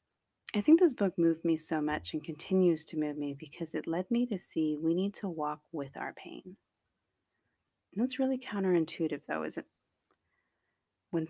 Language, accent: English, American